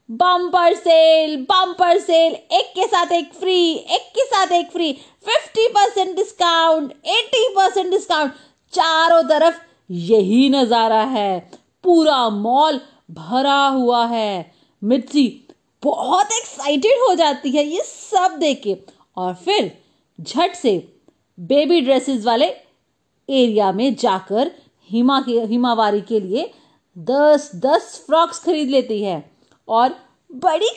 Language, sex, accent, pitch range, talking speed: Hindi, female, native, 230-345 Hz, 120 wpm